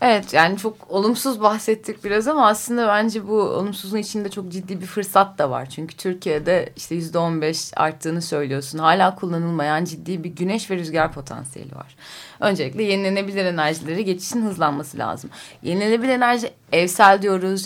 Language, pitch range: Turkish, 155-205 Hz